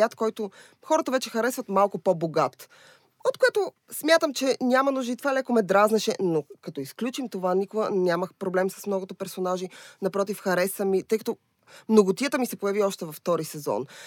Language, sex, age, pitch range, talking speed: Bulgarian, female, 20-39, 170-220 Hz, 165 wpm